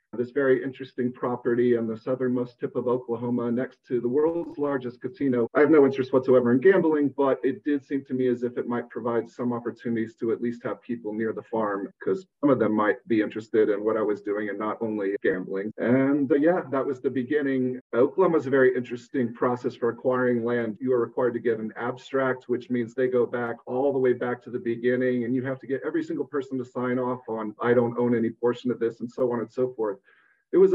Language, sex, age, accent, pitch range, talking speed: English, male, 40-59, American, 115-130 Hz, 240 wpm